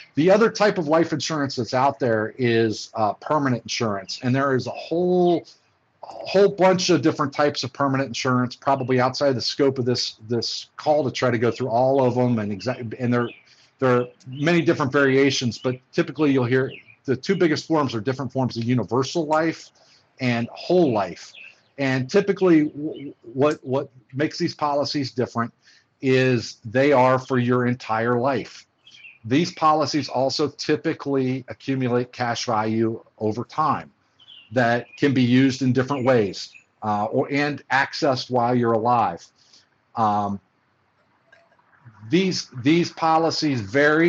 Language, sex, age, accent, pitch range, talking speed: English, male, 50-69, American, 120-150 Hz, 155 wpm